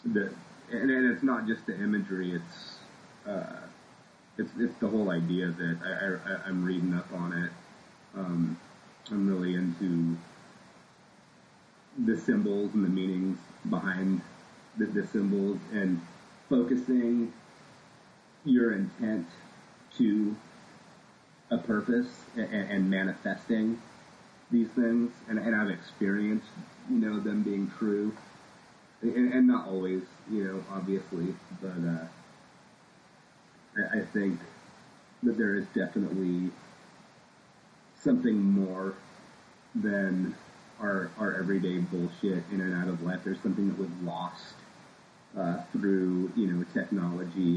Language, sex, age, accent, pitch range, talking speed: English, male, 30-49, American, 90-105 Hz, 120 wpm